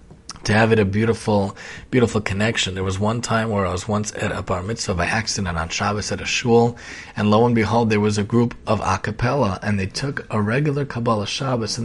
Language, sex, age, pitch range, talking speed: English, male, 30-49, 105-125 Hz, 220 wpm